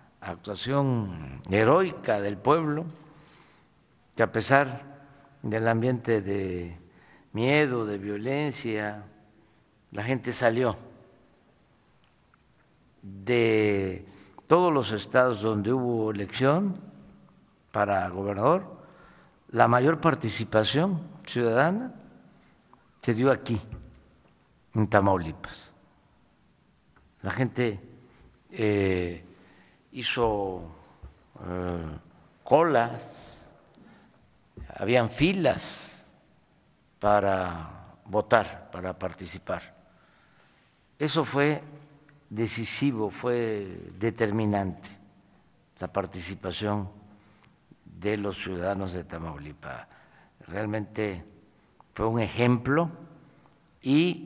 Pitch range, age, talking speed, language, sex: 100-140 Hz, 50-69, 70 wpm, Spanish, male